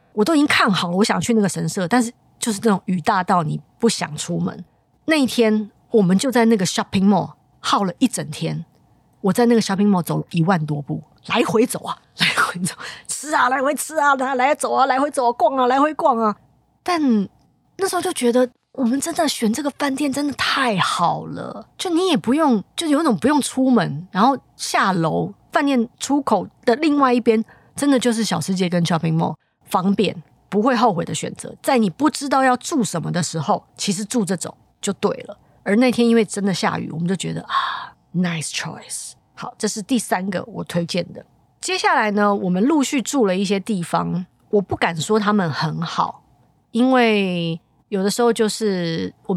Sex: female